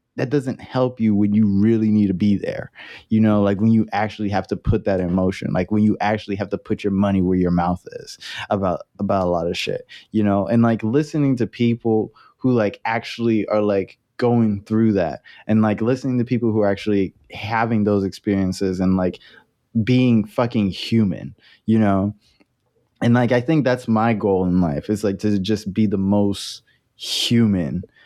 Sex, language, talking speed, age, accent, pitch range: male, English, 195 wpm, 20-39, American, 100-115 Hz